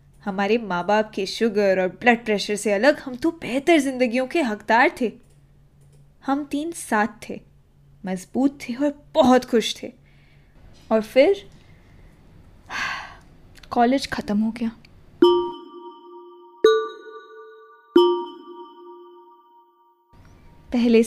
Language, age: Hindi, 10-29